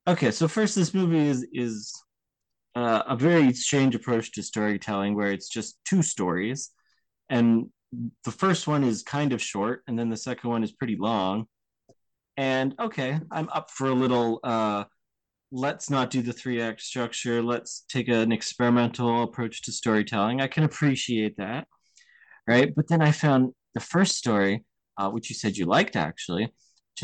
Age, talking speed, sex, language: 20-39, 170 wpm, male, English